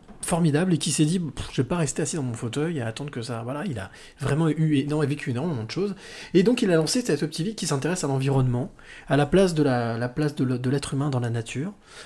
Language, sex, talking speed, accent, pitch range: French, male, 280 wpm, French, 120-155 Hz